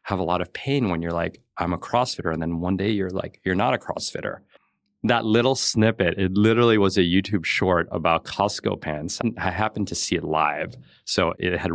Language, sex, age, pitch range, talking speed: English, male, 30-49, 85-105 Hz, 215 wpm